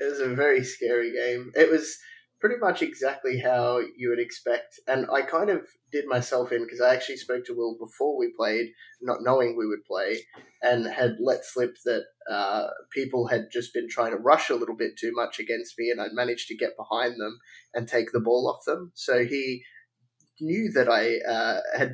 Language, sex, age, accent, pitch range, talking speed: English, male, 10-29, Australian, 120-165 Hz, 210 wpm